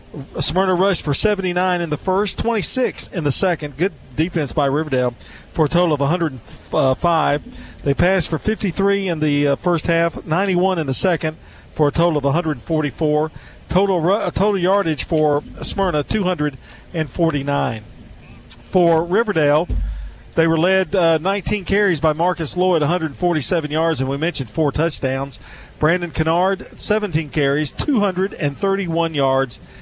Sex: male